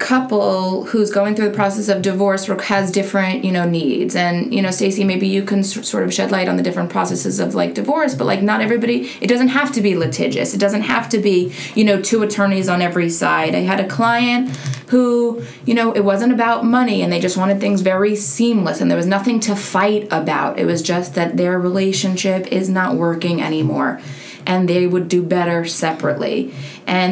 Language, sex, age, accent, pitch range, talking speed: English, female, 20-39, American, 180-210 Hz, 210 wpm